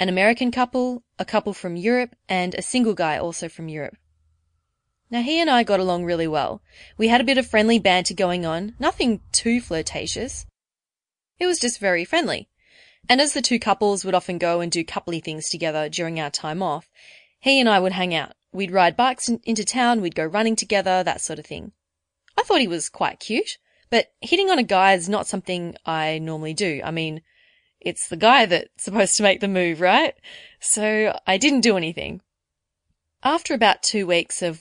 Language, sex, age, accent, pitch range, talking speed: English, female, 20-39, Australian, 165-230 Hz, 200 wpm